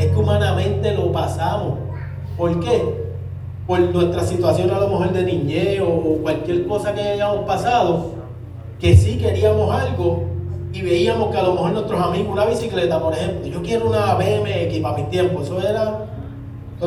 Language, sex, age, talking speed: Spanish, male, 30-49, 165 wpm